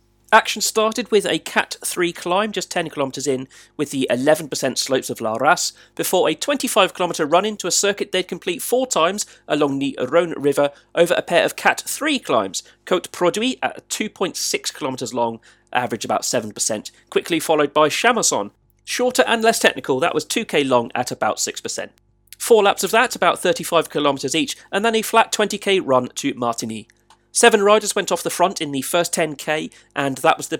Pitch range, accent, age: 140-210 Hz, British, 40-59